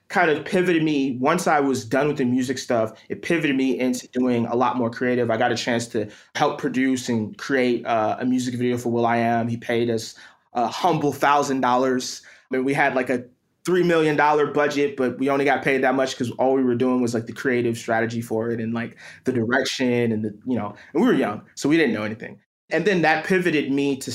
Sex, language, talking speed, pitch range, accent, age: male, English, 240 wpm, 120-145 Hz, American, 20-39